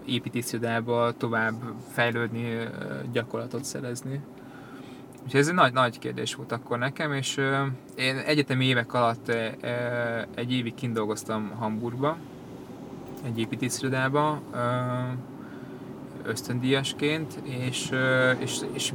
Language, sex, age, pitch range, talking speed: Hungarian, male, 20-39, 115-130 Hz, 90 wpm